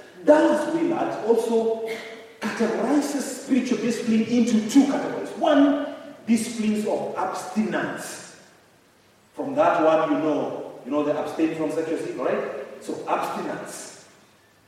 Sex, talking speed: male, 110 wpm